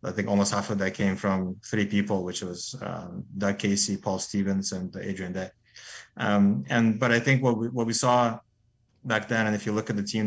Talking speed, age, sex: 230 wpm, 30-49, male